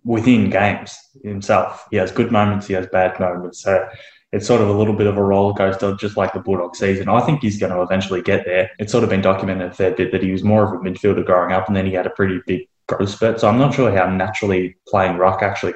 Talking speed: 265 wpm